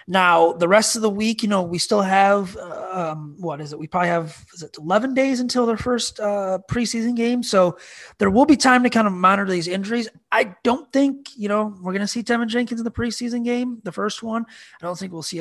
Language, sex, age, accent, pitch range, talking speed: English, male, 30-49, American, 170-215 Hz, 240 wpm